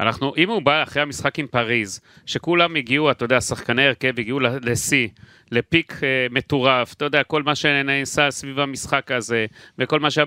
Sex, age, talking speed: male, 30-49, 170 wpm